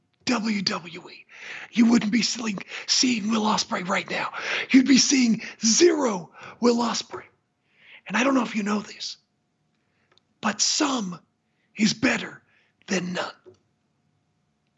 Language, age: English, 40-59